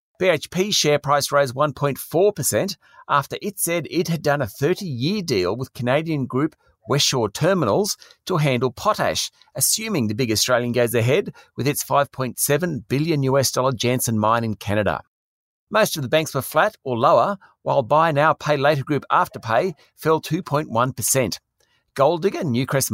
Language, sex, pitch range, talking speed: English, male, 120-165 Hz, 150 wpm